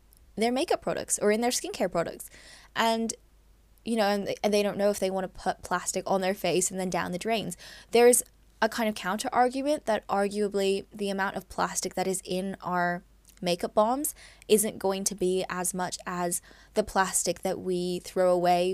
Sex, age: female, 10-29